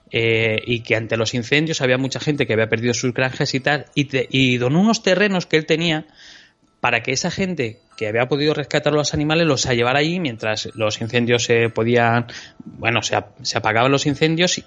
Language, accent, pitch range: Spanish, Spanish, 120-155 Hz